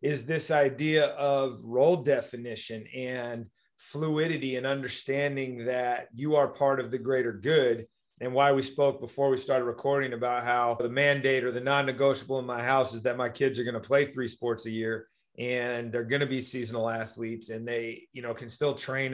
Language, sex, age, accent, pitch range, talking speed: English, male, 30-49, American, 125-145 Hz, 195 wpm